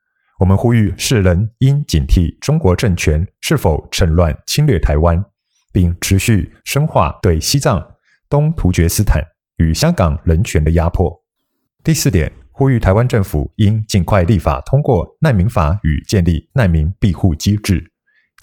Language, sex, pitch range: Chinese, male, 85-115 Hz